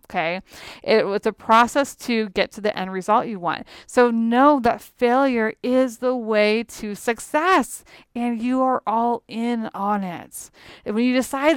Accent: American